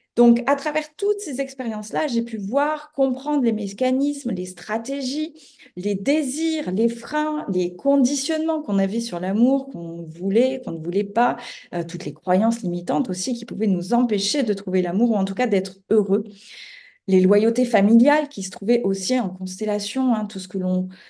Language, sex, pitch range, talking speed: French, female, 195-265 Hz, 180 wpm